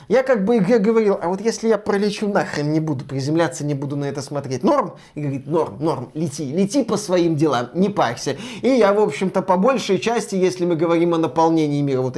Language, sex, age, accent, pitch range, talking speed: Russian, male, 20-39, native, 155-225 Hz, 220 wpm